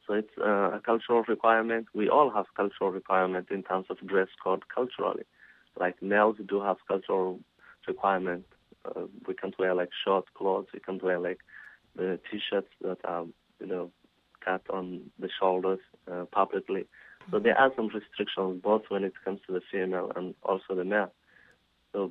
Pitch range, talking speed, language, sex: 90-105 Hz, 175 wpm, English, male